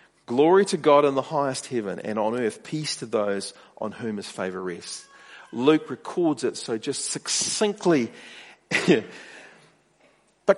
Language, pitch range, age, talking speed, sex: English, 195-290 Hz, 40-59, 140 wpm, male